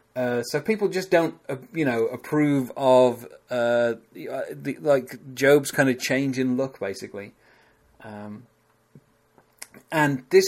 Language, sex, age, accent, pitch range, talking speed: English, male, 30-49, British, 110-135 Hz, 125 wpm